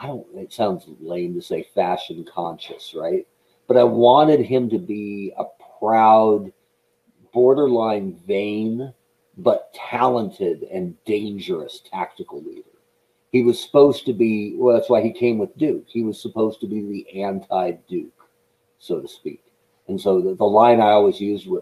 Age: 50-69